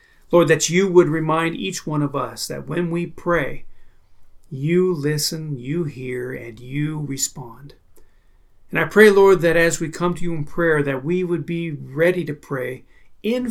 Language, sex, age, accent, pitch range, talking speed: English, male, 40-59, American, 140-180 Hz, 180 wpm